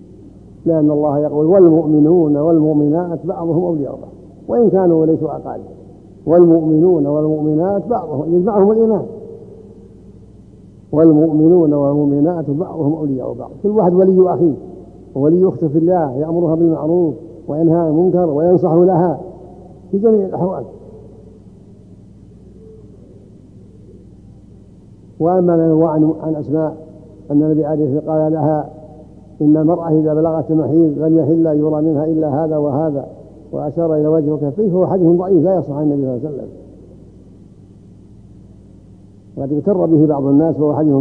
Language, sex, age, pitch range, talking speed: Arabic, male, 50-69, 135-165 Hz, 125 wpm